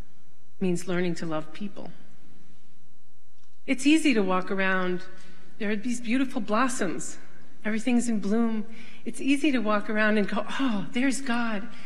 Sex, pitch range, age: female, 185-240 Hz, 40-59